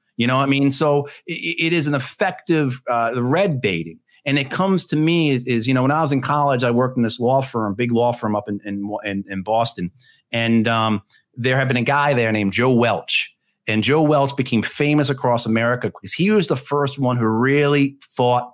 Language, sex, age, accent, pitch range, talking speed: English, male, 40-59, American, 110-145 Hz, 220 wpm